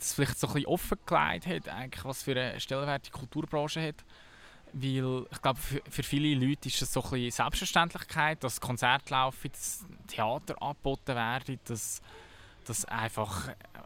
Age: 20-39